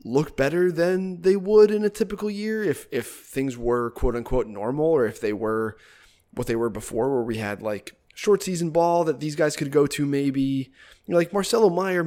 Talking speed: 210 wpm